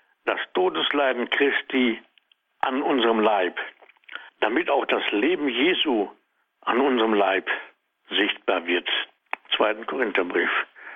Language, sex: German, male